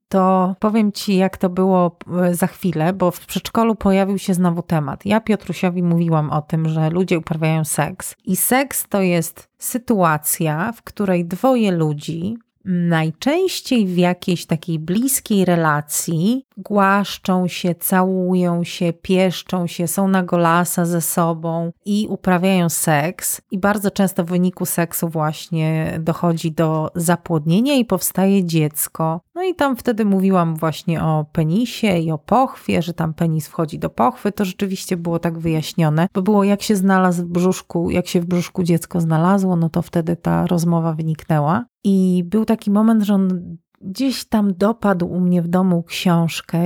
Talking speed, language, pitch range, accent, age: 155 wpm, Polish, 170-200 Hz, native, 30-49